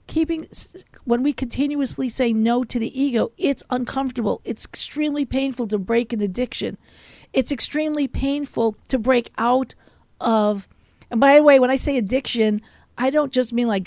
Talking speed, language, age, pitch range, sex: 165 wpm, English, 50-69, 210-265 Hz, female